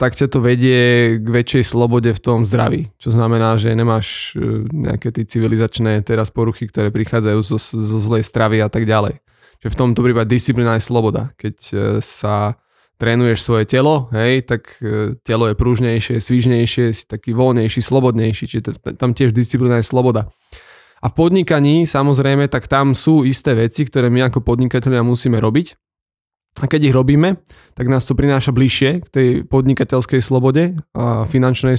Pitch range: 115-140 Hz